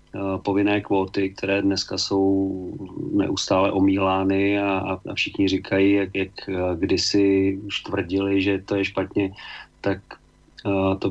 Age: 40-59